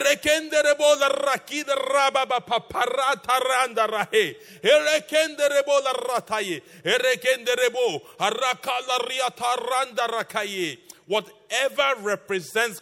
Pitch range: 165-235 Hz